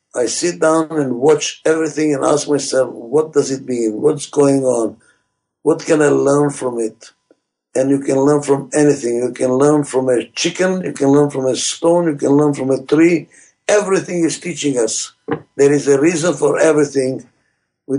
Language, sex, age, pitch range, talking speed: English, male, 60-79, 130-155 Hz, 190 wpm